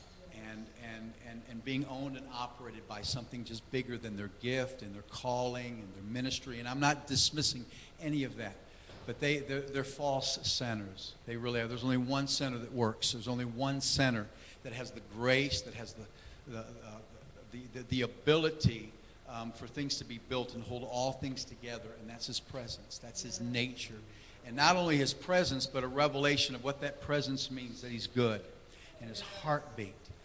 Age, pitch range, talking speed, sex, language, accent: 50-69, 115-140 Hz, 190 wpm, male, English, American